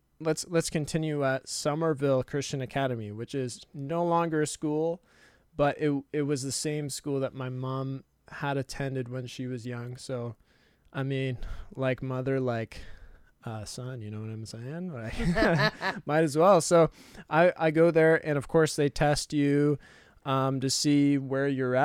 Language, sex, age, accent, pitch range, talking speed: English, male, 20-39, American, 125-155 Hz, 170 wpm